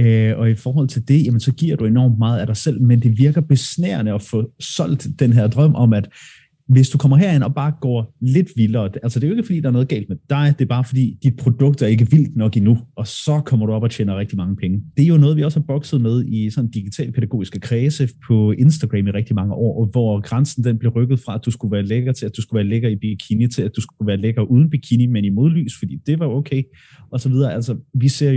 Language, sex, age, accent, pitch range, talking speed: Danish, male, 30-49, native, 110-145 Hz, 265 wpm